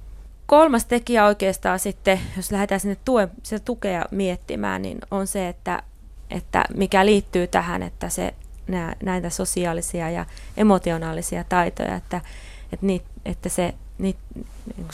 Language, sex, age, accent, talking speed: Finnish, female, 20-39, native, 105 wpm